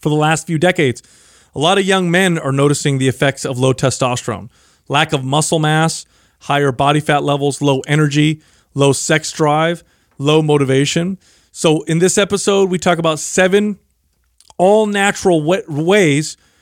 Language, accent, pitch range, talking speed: English, American, 140-180 Hz, 150 wpm